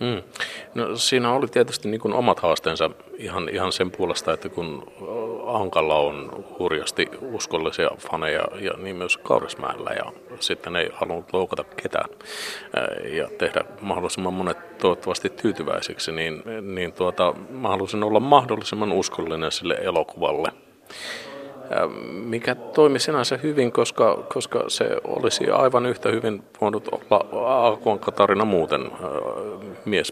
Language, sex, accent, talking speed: Finnish, male, native, 120 wpm